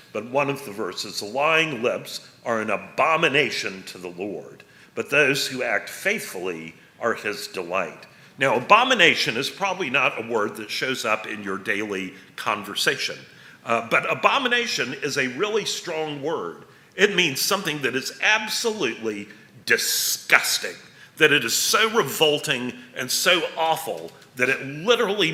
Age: 50-69